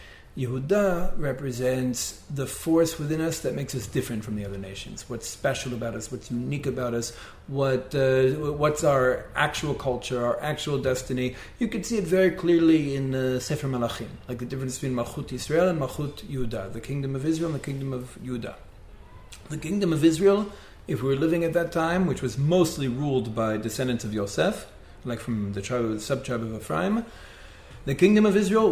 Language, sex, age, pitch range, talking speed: English, male, 40-59, 120-155 Hz, 185 wpm